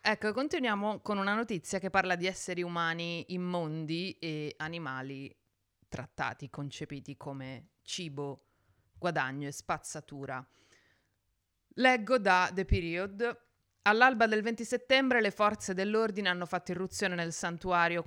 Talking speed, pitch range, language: 120 wpm, 150-195 Hz, Italian